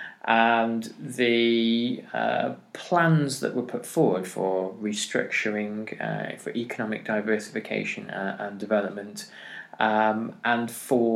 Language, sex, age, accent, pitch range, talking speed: English, male, 20-39, British, 105-130 Hz, 110 wpm